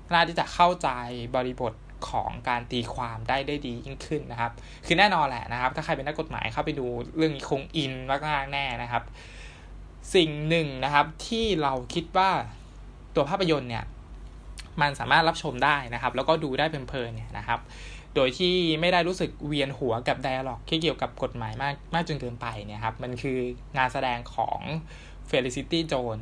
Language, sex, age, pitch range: Thai, male, 20-39, 120-155 Hz